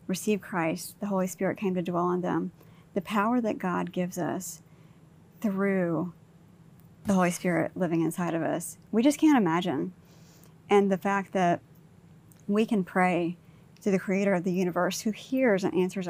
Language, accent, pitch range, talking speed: English, American, 165-195 Hz, 170 wpm